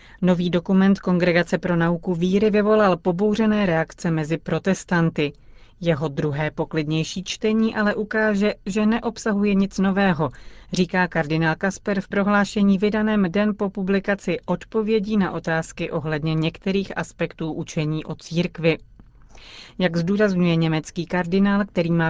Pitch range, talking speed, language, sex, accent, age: 160-200 Hz, 120 wpm, Czech, female, native, 30-49